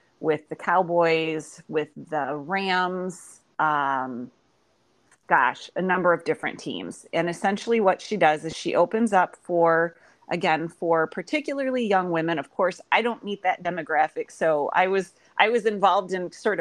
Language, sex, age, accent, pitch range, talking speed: English, female, 30-49, American, 165-205 Hz, 155 wpm